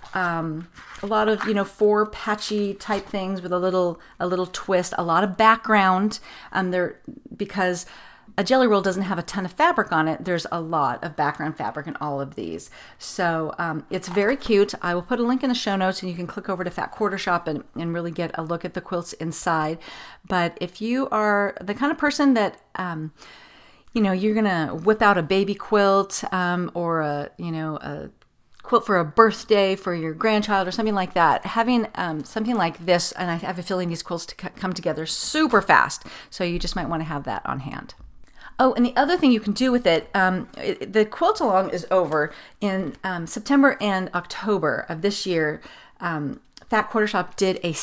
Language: English